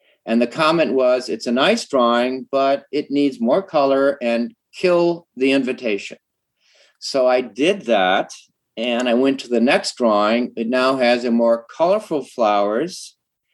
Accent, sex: American, male